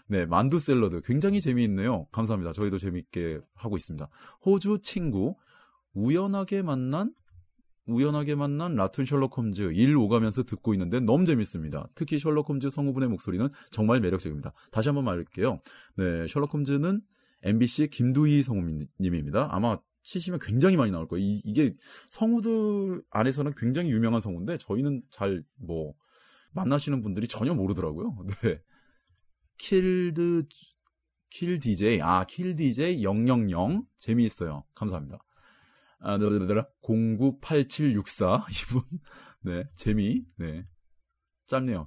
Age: 30-49